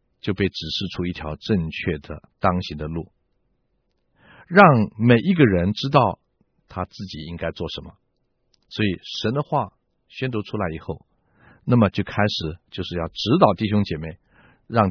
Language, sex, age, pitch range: Chinese, male, 50-69, 85-140 Hz